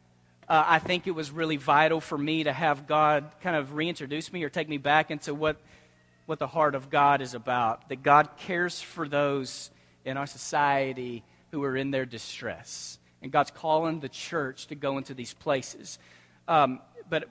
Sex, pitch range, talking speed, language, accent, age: male, 120-155 Hz, 185 wpm, English, American, 40-59